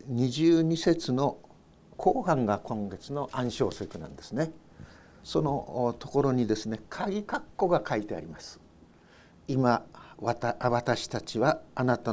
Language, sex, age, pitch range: Japanese, male, 60-79, 115-160 Hz